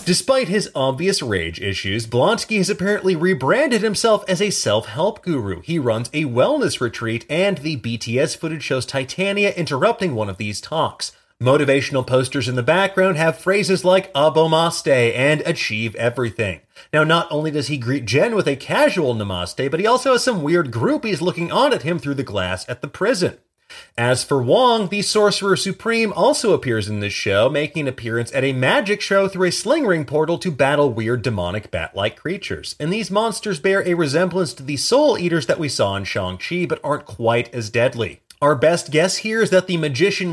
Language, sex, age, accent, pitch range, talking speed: English, male, 30-49, American, 120-190 Hz, 185 wpm